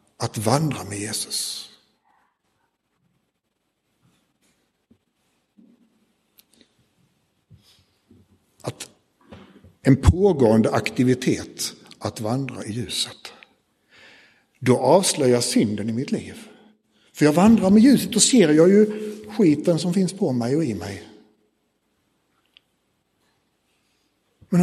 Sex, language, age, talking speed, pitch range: male, Swedish, 60-79, 90 wpm, 150-205 Hz